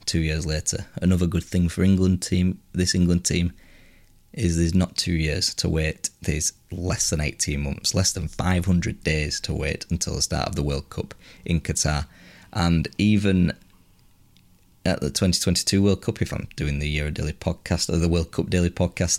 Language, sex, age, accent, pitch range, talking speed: English, male, 20-39, British, 80-95 Hz, 185 wpm